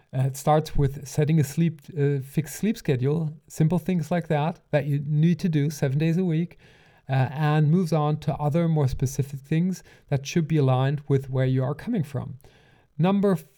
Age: 40-59